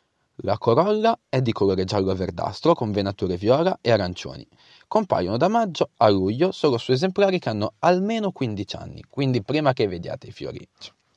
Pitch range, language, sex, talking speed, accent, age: 100-165 Hz, Italian, male, 160 wpm, native, 30-49